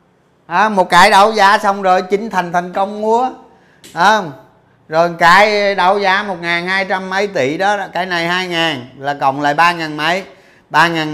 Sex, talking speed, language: male, 165 wpm, Vietnamese